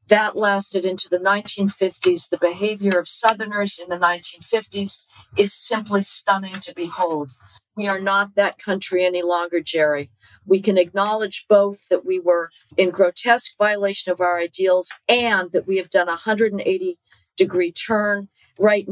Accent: American